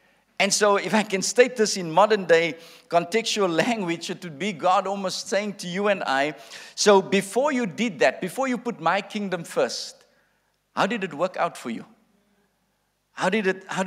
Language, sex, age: English, male, 50-69